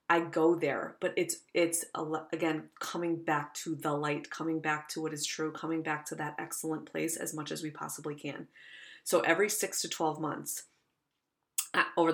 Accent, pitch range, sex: American, 155-170 Hz, female